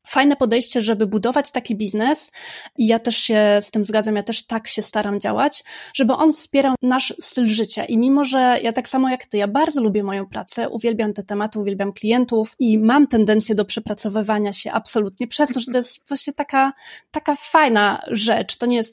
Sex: female